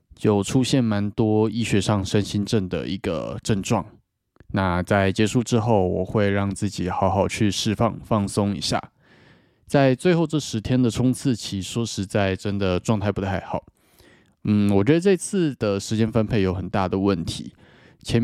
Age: 20-39